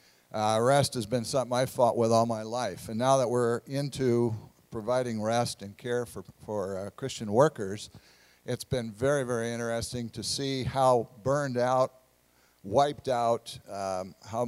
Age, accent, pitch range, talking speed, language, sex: 60-79, American, 100-130 Hz, 160 wpm, English, male